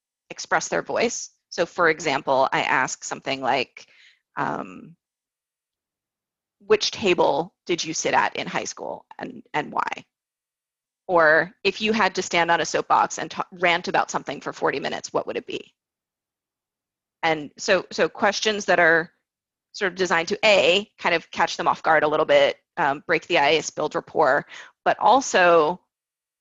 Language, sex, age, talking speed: English, female, 30-49, 160 wpm